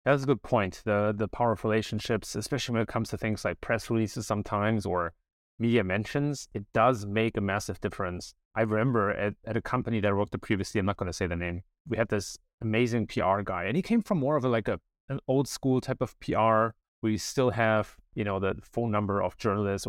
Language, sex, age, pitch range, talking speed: English, male, 30-49, 95-120 Hz, 235 wpm